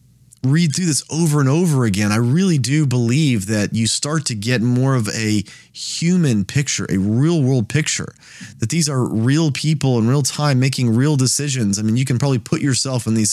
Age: 30-49